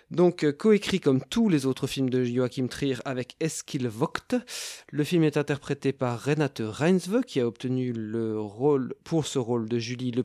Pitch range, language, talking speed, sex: 120-165 Hz, French, 180 wpm, male